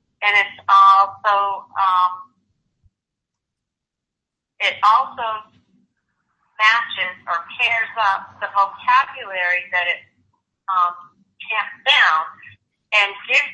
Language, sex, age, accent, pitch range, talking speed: English, female, 40-59, American, 190-220 Hz, 85 wpm